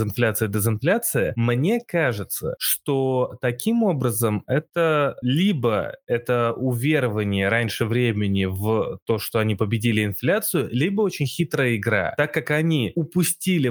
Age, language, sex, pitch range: 20-39, Russian, male, 115-150 Hz